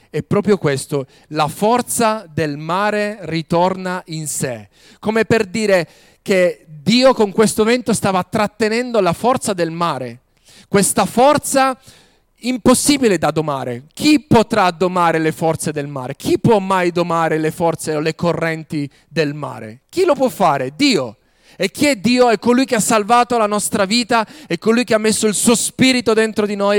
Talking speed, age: 170 wpm, 30-49